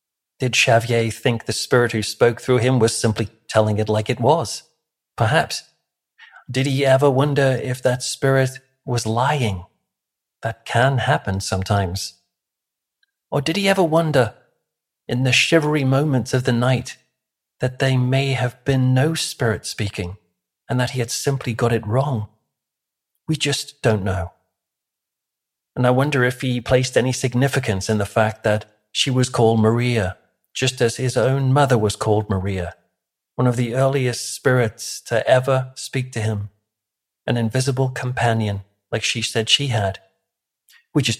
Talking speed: 155 wpm